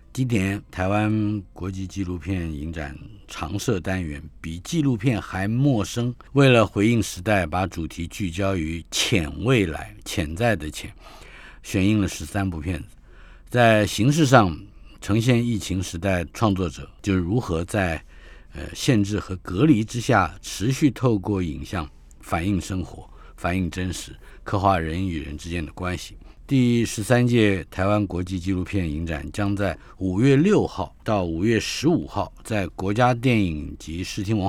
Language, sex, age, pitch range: Chinese, male, 50-69, 85-110 Hz